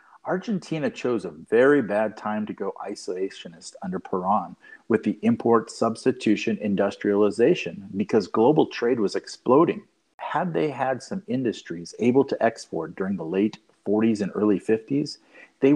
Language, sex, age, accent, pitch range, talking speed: English, male, 50-69, American, 105-140 Hz, 140 wpm